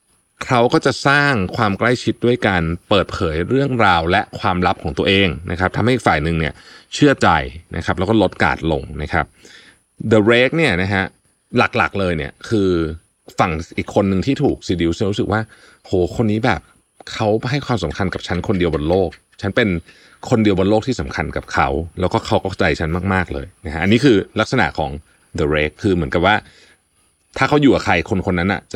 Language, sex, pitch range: Thai, male, 85-120 Hz